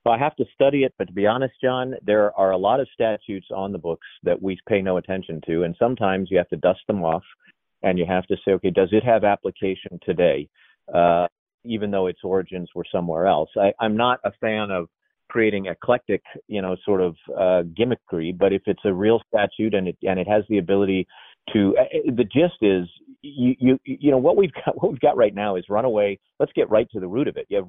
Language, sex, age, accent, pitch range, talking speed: English, male, 40-59, American, 95-110 Hz, 235 wpm